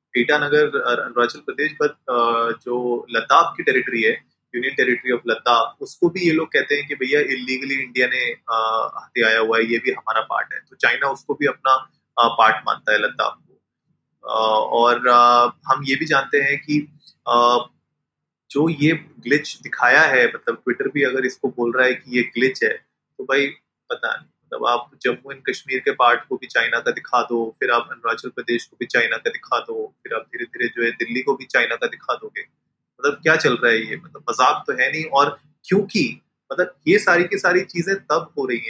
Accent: native